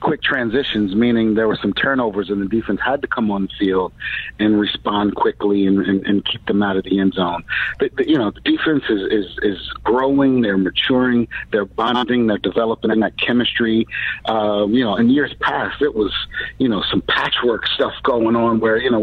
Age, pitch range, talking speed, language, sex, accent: 50-69, 105-125 Hz, 205 wpm, English, male, American